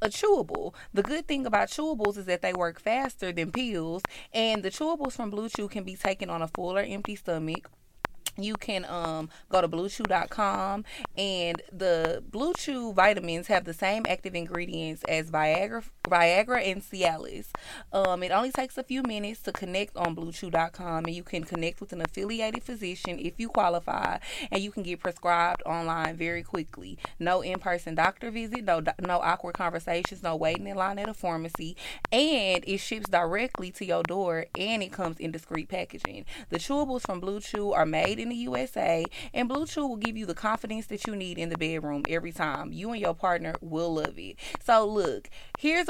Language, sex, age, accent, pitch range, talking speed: English, female, 20-39, American, 170-220 Hz, 190 wpm